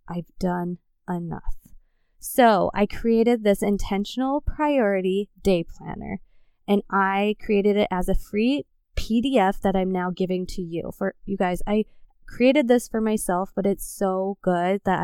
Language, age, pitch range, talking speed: English, 20-39, 185-225 Hz, 150 wpm